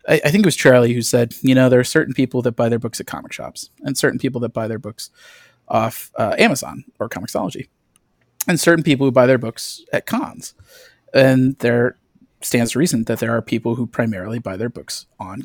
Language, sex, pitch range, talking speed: English, male, 120-135 Hz, 220 wpm